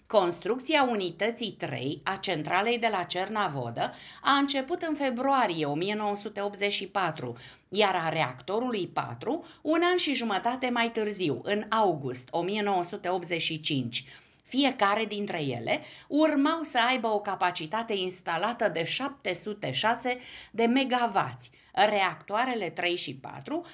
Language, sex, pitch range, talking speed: Romanian, female, 160-240 Hz, 110 wpm